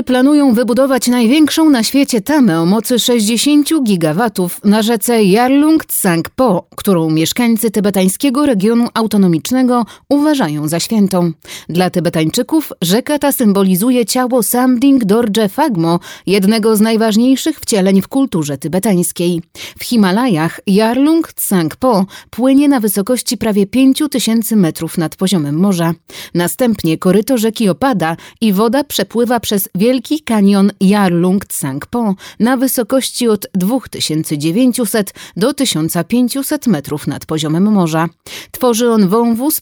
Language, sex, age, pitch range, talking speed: Polish, female, 30-49, 180-255 Hz, 115 wpm